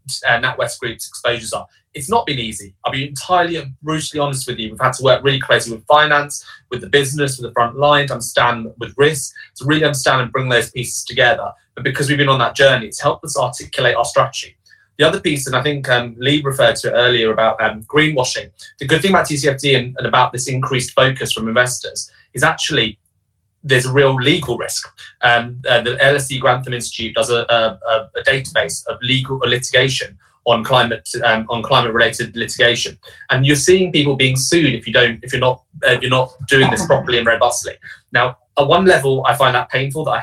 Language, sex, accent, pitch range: English, male, British, 120-140 Hz